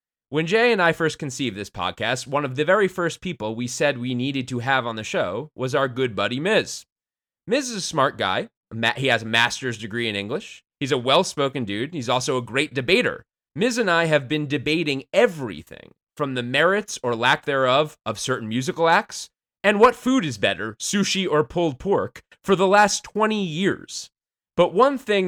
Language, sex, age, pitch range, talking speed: English, male, 30-49, 115-165 Hz, 195 wpm